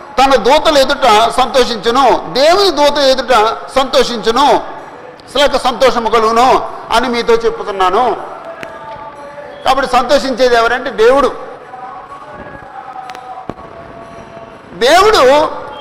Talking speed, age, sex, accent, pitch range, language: 70 wpm, 50-69, male, native, 270-340 Hz, Telugu